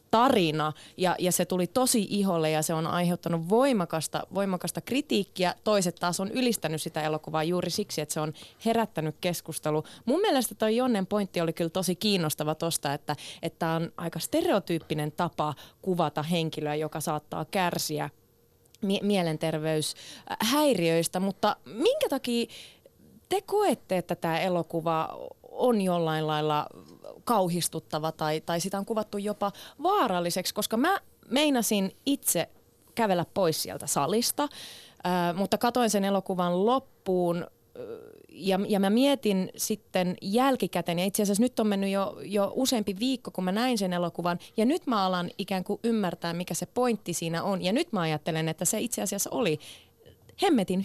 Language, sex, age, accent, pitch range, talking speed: Finnish, female, 20-39, native, 165-225 Hz, 150 wpm